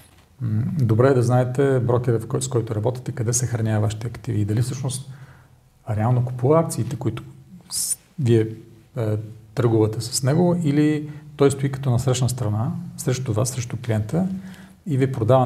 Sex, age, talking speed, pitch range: male, 40-59, 150 wpm, 115-135 Hz